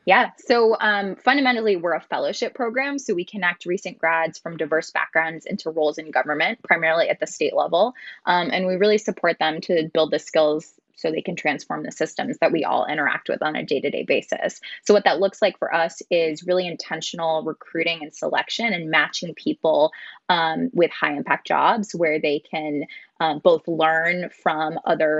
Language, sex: English, female